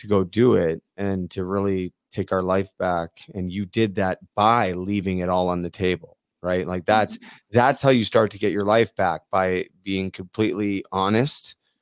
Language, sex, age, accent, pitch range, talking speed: English, male, 30-49, American, 90-105 Hz, 195 wpm